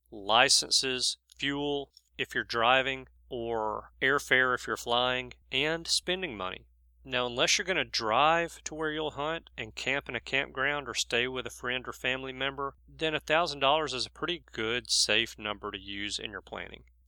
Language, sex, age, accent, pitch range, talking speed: English, male, 40-59, American, 105-140 Hz, 170 wpm